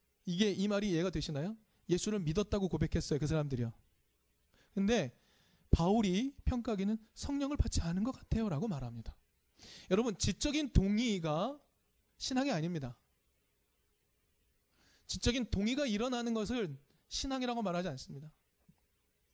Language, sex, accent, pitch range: Korean, male, native, 140-225 Hz